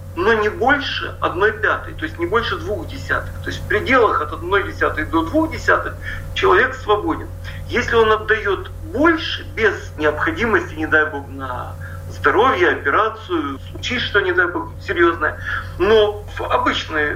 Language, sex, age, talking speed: Russian, male, 50-69, 155 wpm